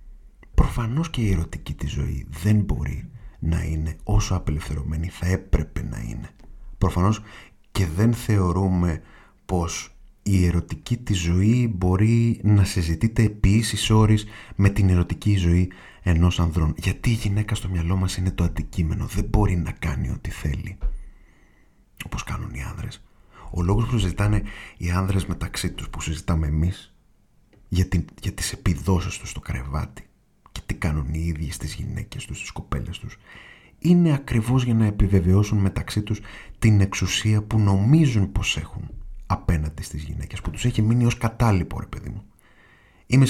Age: 30-49